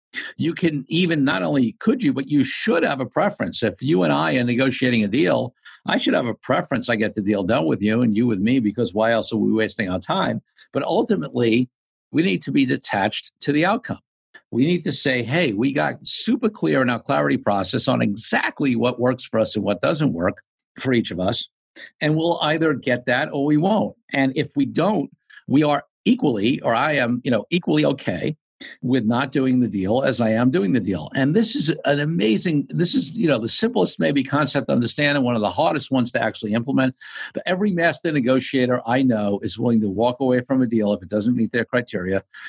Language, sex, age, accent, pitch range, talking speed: English, male, 50-69, American, 115-145 Hz, 225 wpm